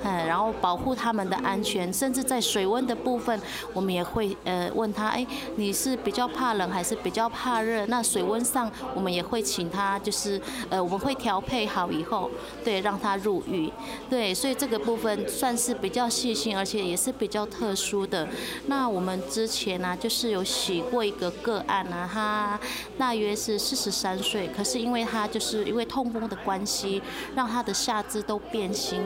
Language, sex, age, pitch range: Chinese, female, 20-39, 195-245 Hz